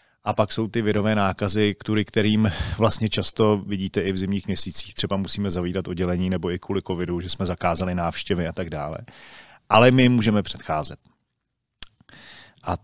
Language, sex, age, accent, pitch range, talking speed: Czech, male, 40-59, native, 85-105 Hz, 165 wpm